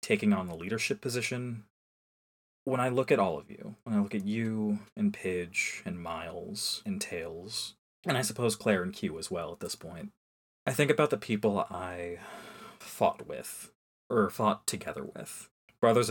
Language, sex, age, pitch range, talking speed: English, male, 20-39, 95-130 Hz, 175 wpm